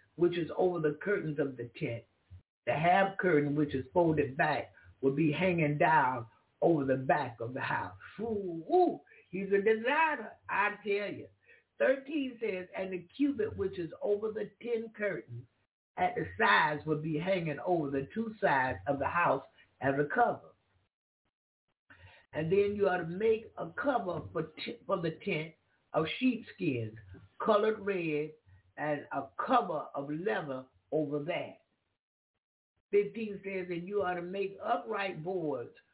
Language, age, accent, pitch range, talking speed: English, 60-79, American, 150-200 Hz, 155 wpm